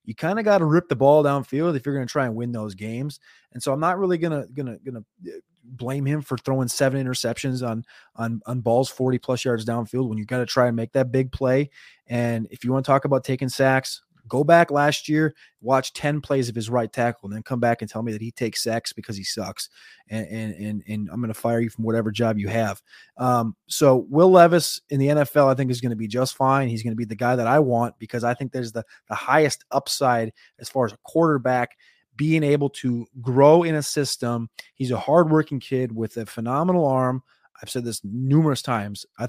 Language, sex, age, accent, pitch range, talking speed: English, male, 30-49, American, 115-140 Hz, 235 wpm